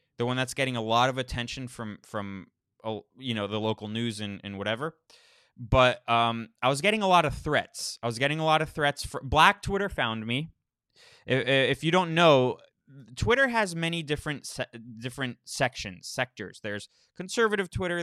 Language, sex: English, male